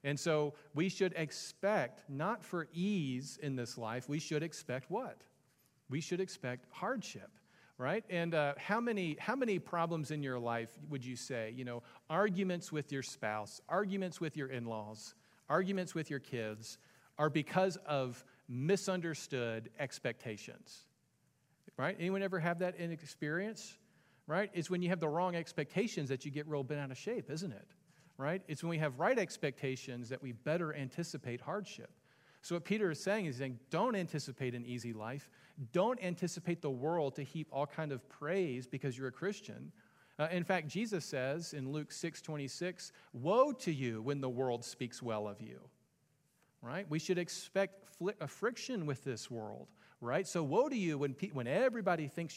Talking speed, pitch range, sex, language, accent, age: 180 wpm, 135-180 Hz, male, English, American, 40-59